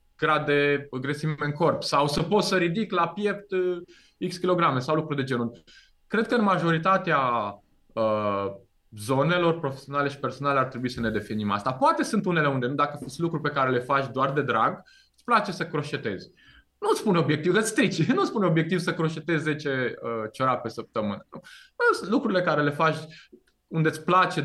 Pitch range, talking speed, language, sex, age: 125-185 Hz, 185 wpm, Romanian, male, 20-39